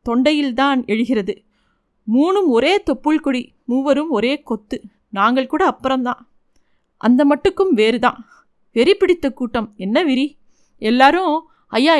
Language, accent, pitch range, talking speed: Tamil, native, 225-280 Hz, 110 wpm